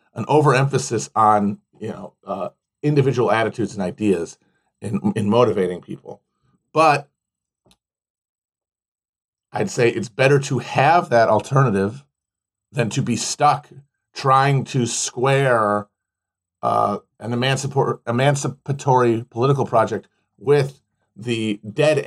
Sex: male